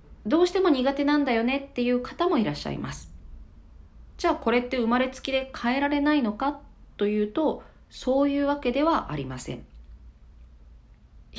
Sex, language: female, Japanese